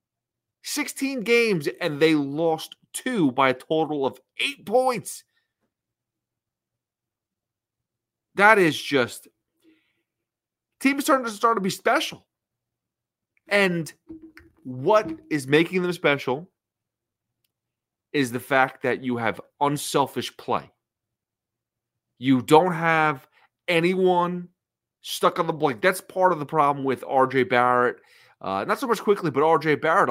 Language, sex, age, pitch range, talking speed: English, male, 30-49, 125-180 Hz, 120 wpm